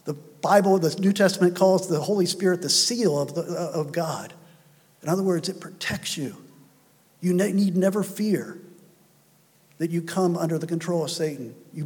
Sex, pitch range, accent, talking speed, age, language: male, 145-175 Hz, American, 165 wpm, 50-69, English